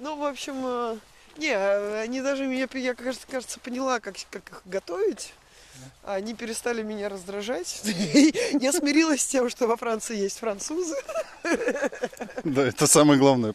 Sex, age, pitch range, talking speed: male, 20-39, 165-230 Hz, 140 wpm